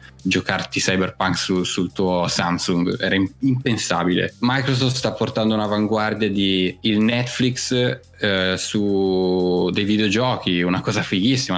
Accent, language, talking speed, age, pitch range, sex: native, Italian, 115 wpm, 10-29, 95-115 Hz, male